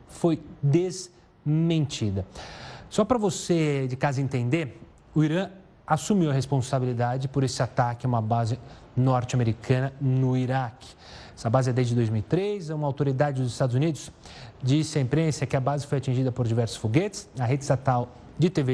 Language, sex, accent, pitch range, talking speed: Portuguese, male, Brazilian, 125-155 Hz, 155 wpm